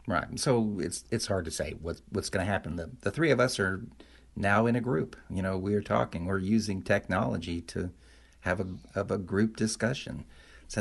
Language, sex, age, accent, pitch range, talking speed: English, male, 50-69, American, 90-110 Hz, 210 wpm